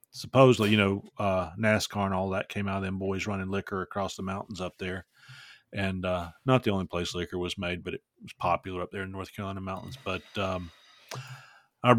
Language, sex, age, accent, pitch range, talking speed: English, male, 40-59, American, 95-115 Hz, 210 wpm